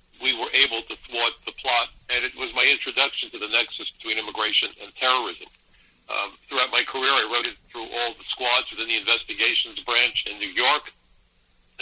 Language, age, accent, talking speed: English, 60-79, American, 195 wpm